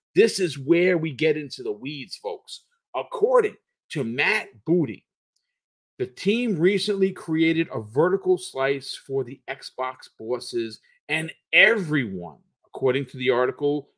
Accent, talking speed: American, 130 wpm